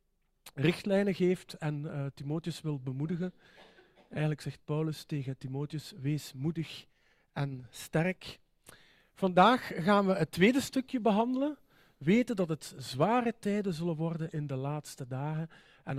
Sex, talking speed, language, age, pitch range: male, 135 wpm, Dutch, 50-69, 140-175 Hz